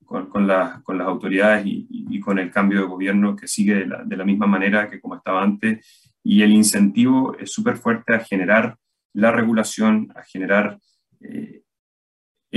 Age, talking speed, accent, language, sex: 30-49, 175 wpm, Argentinian, Spanish, male